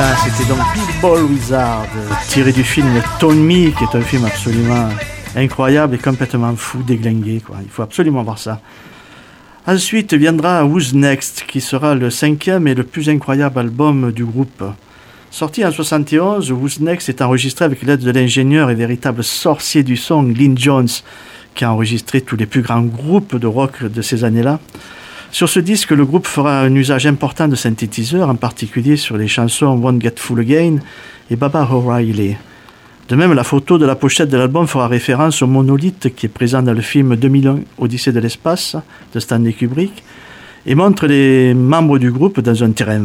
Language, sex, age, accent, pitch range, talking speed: French, male, 50-69, French, 120-150 Hz, 190 wpm